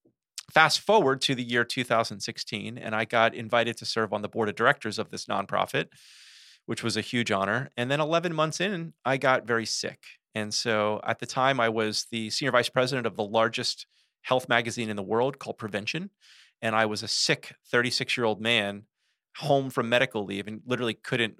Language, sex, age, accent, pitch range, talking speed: English, male, 30-49, American, 110-130 Hz, 195 wpm